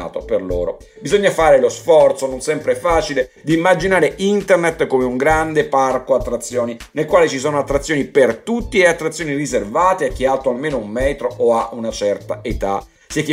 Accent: native